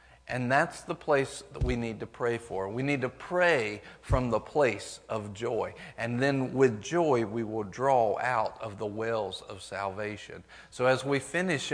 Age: 40-59